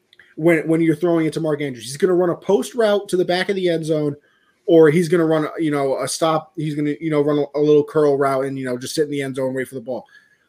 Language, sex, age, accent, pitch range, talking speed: English, male, 20-39, American, 145-185 Hz, 315 wpm